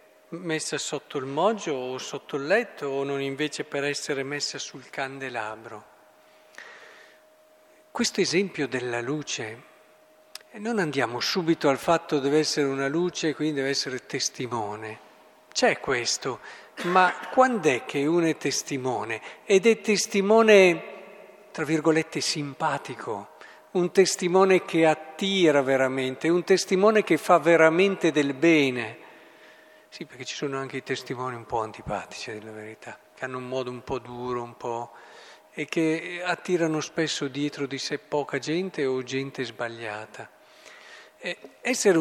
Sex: male